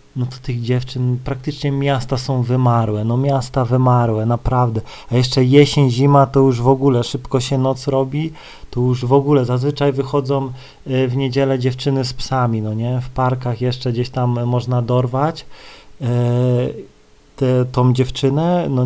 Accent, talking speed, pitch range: native, 150 wpm, 120-135 Hz